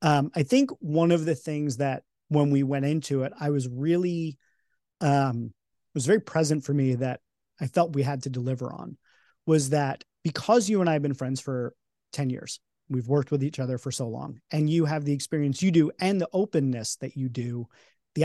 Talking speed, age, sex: 215 wpm, 30-49, male